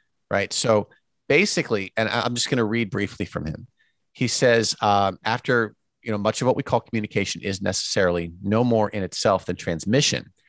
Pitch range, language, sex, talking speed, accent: 95-130 Hz, English, male, 185 wpm, American